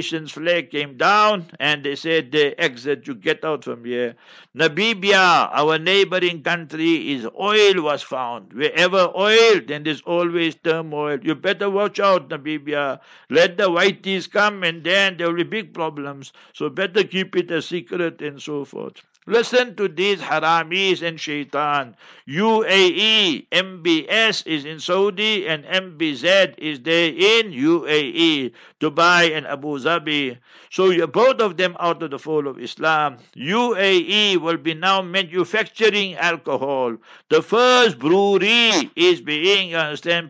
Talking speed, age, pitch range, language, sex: 145 wpm, 60-79, 150-195 Hz, English, male